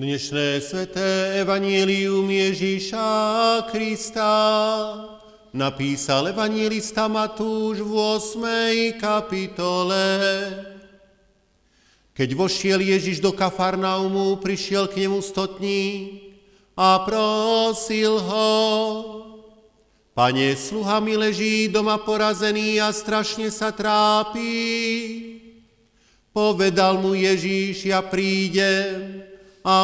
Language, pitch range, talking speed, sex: Slovak, 195-215 Hz, 75 wpm, male